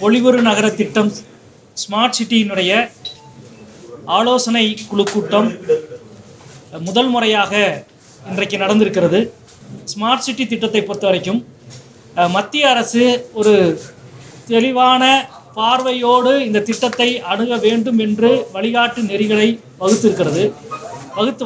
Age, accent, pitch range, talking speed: 30-49, native, 205-260 Hz, 85 wpm